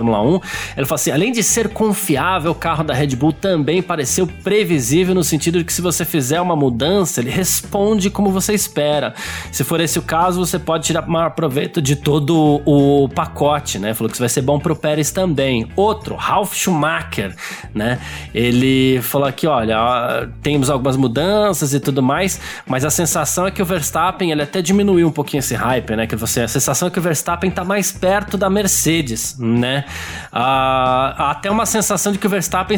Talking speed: 195 wpm